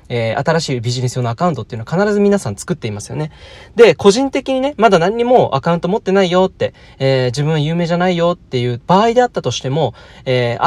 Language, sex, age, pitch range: Japanese, male, 20-39, 125-195 Hz